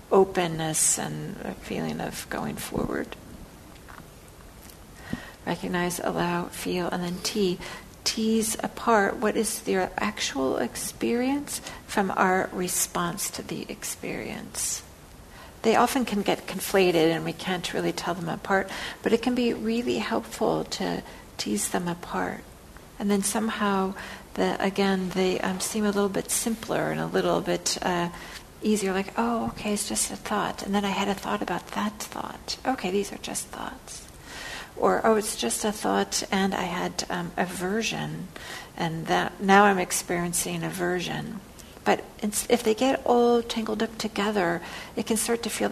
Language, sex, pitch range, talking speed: English, female, 175-220 Hz, 155 wpm